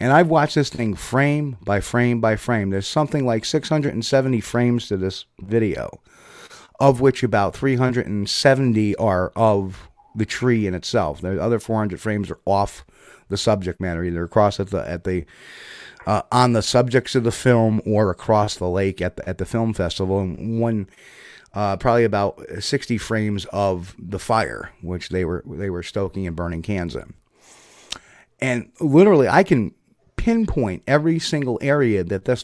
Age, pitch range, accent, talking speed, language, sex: 30-49, 95-125 Hz, American, 165 wpm, English, male